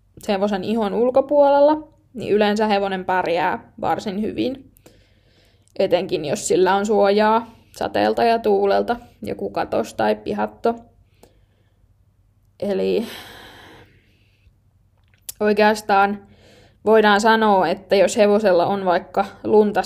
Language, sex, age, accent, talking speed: Finnish, female, 20-39, native, 95 wpm